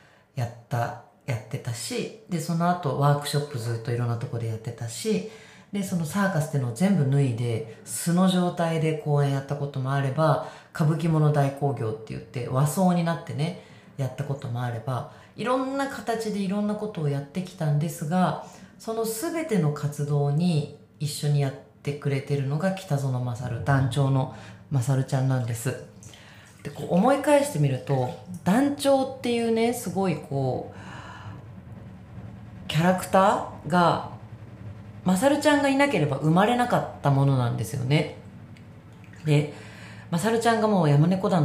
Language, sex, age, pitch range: Japanese, female, 40-59, 125-185 Hz